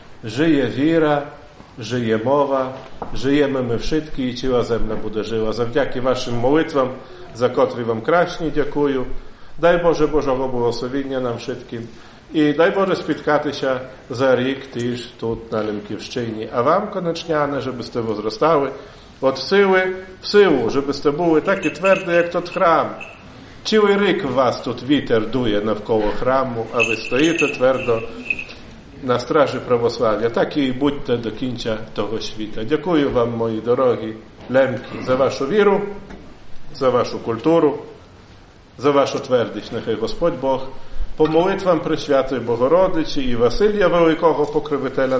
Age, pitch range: 50-69, 115-160 Hz